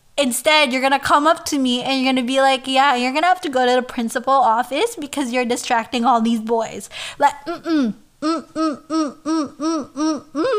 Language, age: English, 20-39